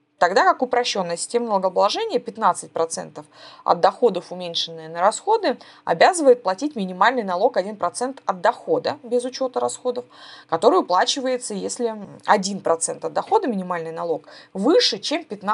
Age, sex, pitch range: 20-39, female, 175-270 Hz